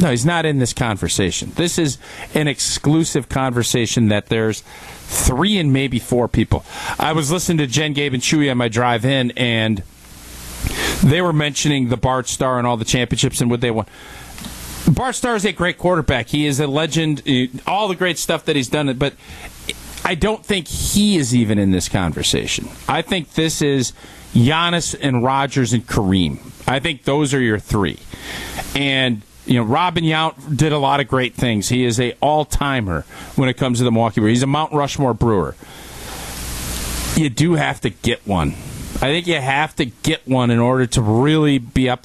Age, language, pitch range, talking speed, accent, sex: 40-59, English, 120-155 Hz, 190 wpm, American, male